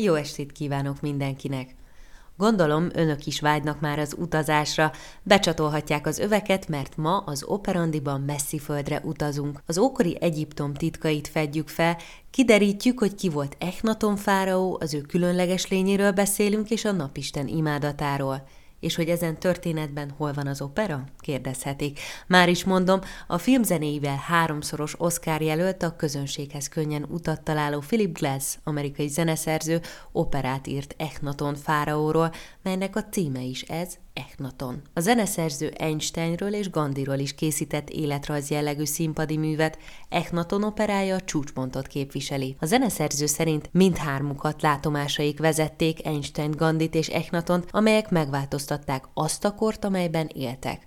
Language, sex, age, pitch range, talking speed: Hungarian, female, 20-39, 145-175 Hz, 130 wpm